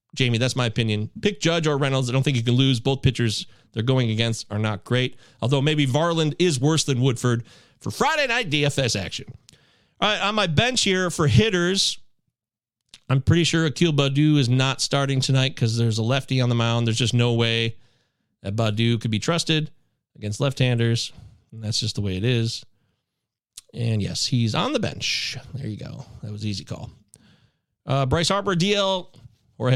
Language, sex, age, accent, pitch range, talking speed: English, male, 30-49, American, 120-170 Hz, 190 wpm